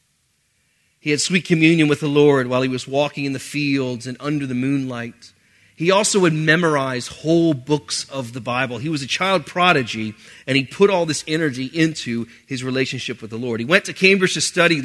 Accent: American